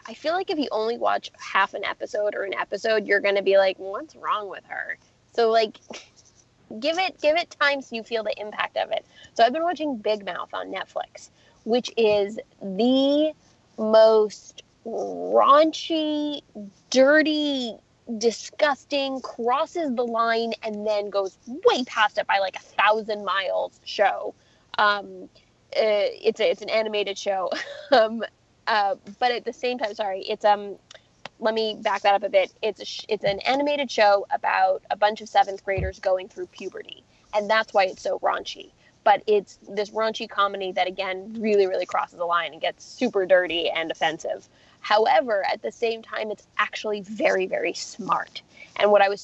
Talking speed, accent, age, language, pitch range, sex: 175 wpm, American, 20-39, English, 205-270 Hz, female